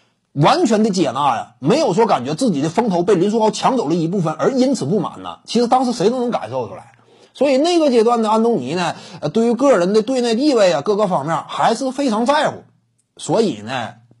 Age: 30-49